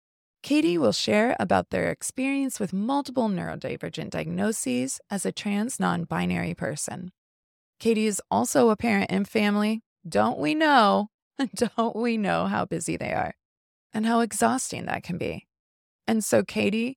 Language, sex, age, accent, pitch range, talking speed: English, female, 20-39, American, 190-255 Hz, 145 wpm